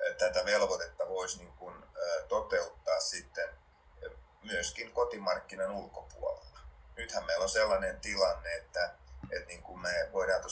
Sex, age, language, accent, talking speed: male, 30-49, Finnish, native, 110 wpm